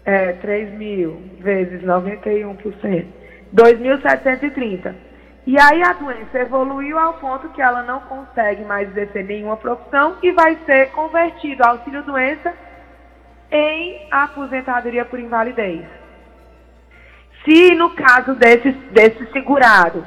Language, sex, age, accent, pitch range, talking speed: Portuguese, female, 20-39, Brazilian, 205-270 Hz, 105 wpm